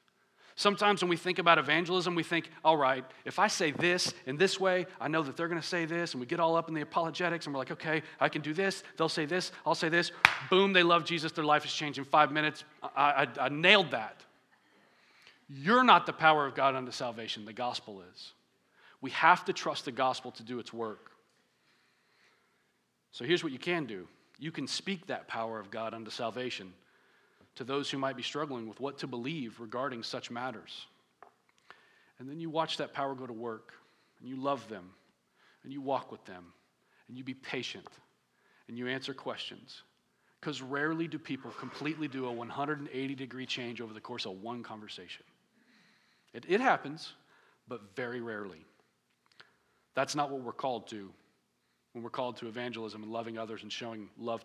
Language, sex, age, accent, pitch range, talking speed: English, male, 40-59, American, 120-160 Hz, 195 wpm